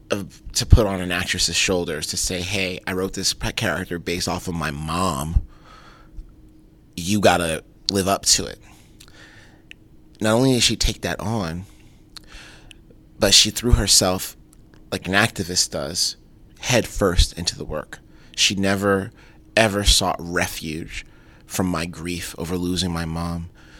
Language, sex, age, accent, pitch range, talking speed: English, male, 30-49, American, 90-115 Hz, 140 wpm